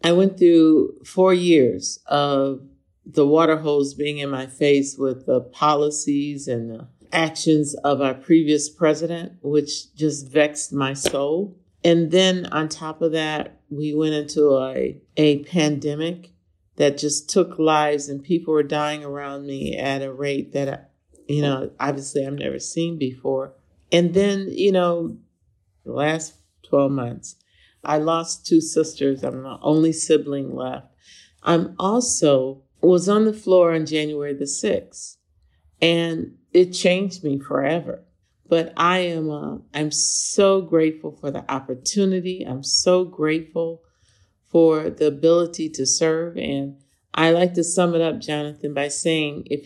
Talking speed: 145 wpm